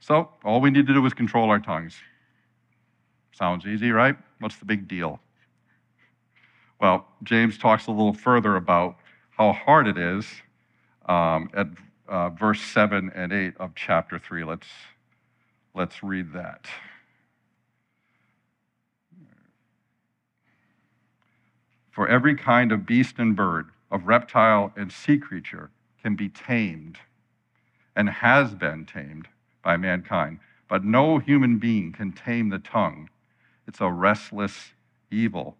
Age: 60-79